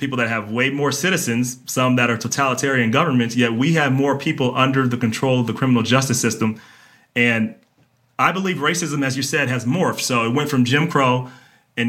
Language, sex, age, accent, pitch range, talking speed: English, male, 30-49, American, 120-140 Hz, 200 wpm